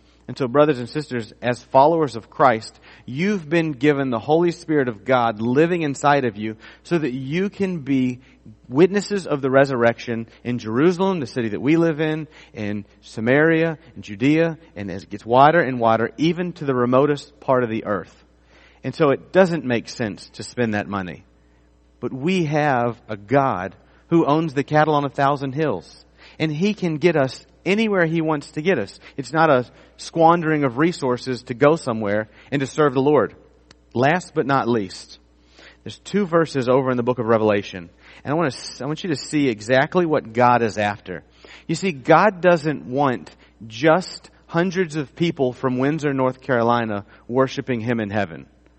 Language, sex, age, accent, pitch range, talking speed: English, male, 40-59, American, 115-155 Hz, 185 wpm